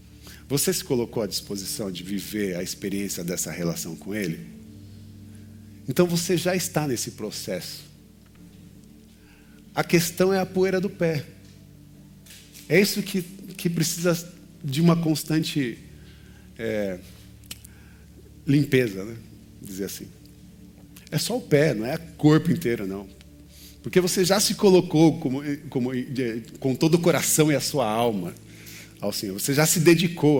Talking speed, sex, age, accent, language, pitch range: 140 wpm, male, 40-59, Brazilian, Portuguese, 110-165 Hz